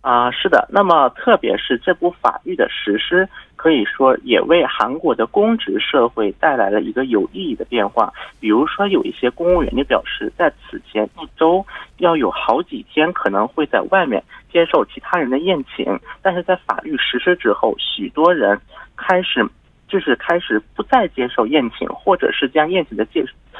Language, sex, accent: Korean, male, Chinese